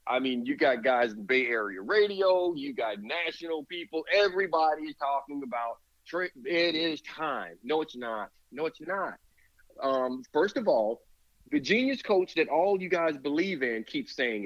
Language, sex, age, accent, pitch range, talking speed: English, male, 40-59, American, 145-195 Hz, 170 wpm